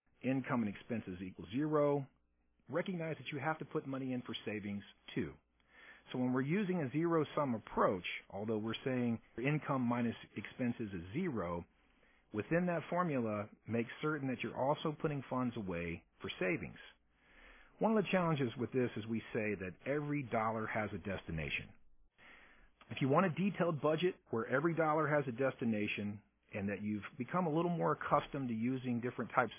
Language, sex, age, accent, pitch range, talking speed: English, male, 50-69, American, 100-145 Hz, 170 wpm